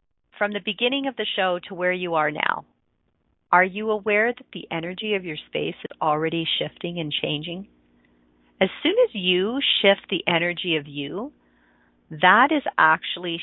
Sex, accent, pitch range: female, American, 150-200 Hz